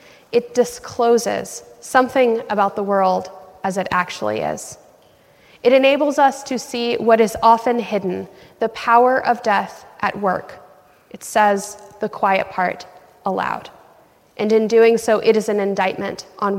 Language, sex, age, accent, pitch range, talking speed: English, female, 10-29, American, 210-245 Hz, 145 wpm